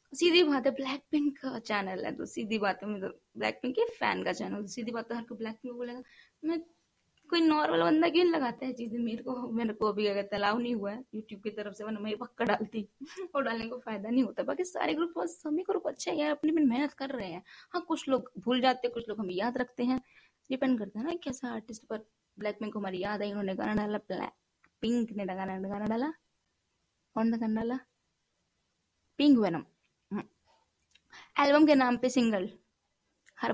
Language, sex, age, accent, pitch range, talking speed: Hindi, female, 20-39, native, 215-295 Hz, 125 wpm